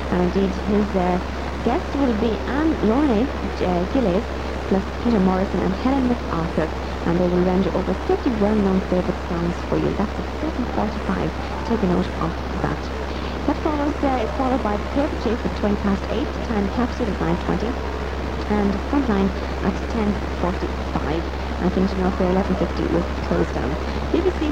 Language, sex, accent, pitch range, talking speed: English, female, British, 65-85 Hz, 165 wpm